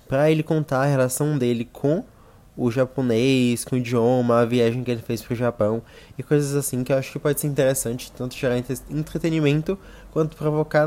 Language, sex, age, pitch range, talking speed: Portuguese, male, 20-39, 120-140 Hz, 190 wpm